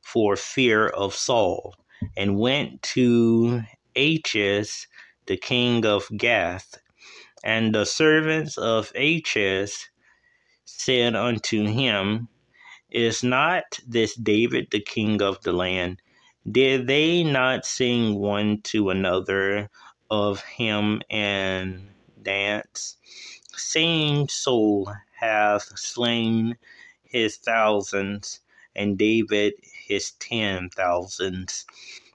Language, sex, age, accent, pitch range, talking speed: English, male, 20-39, American, 105-125 Hz, 95 wpm